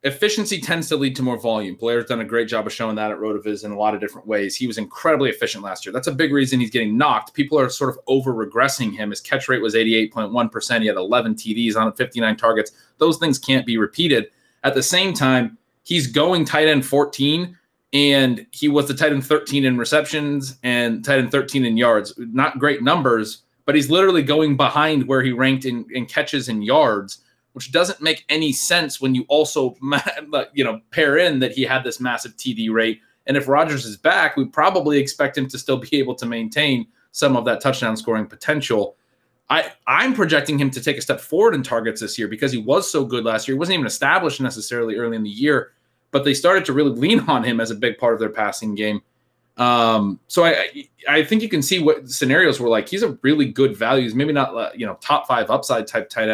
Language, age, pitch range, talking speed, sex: English, 20-39, 115-145 Hz, 225 wpm, male